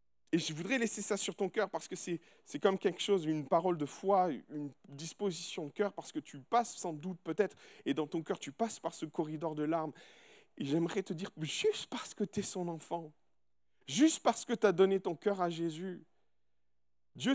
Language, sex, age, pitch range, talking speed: French, male, 40-59, 155-235 Hz, 220 wpm